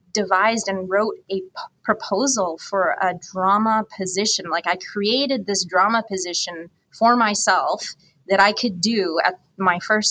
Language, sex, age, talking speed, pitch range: English, female, 20-39, 140 wpm, 180-215 Hz